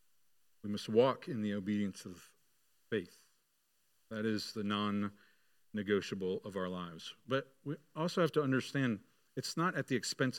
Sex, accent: male, American